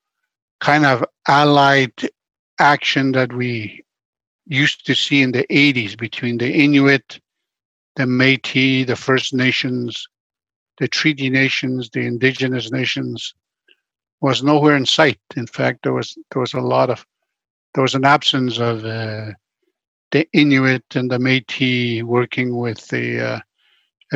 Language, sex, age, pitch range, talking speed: English, male, 60-79, 125-140 Hz, 135 wpm